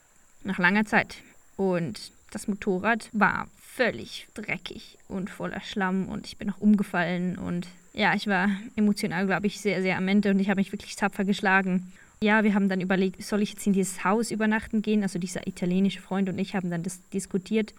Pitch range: 190-220 Hz